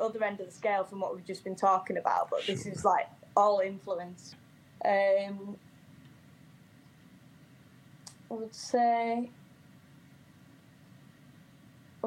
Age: 10-29